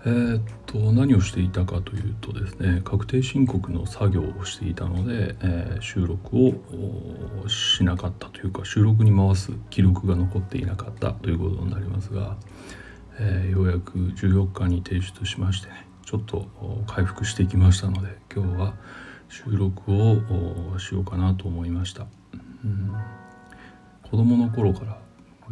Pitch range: 90-105 Hz